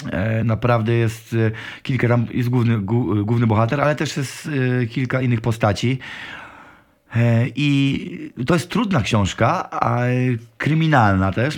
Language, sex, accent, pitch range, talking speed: Polish, male, native, 110-135 Hz, 100 wpm